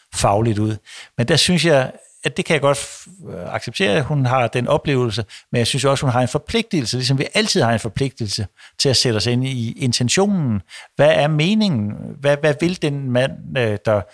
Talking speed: 200 wpm